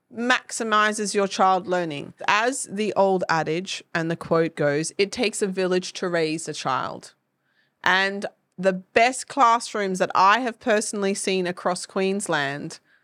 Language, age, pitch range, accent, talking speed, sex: English, 30-49, 190-225 Hz, Australian, 145 wpm, female